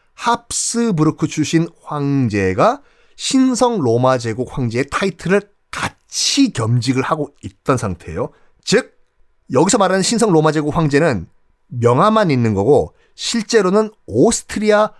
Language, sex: Korean, male